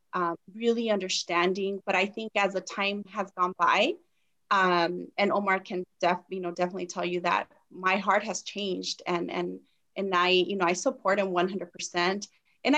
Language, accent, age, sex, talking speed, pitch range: English, American, 30-49, female, 190 wpm, 180-210 Hz